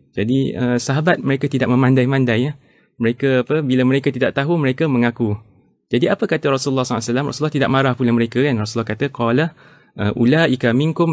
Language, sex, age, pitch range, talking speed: Malay, male, 20-39, 120-145 Hz, 175 wpm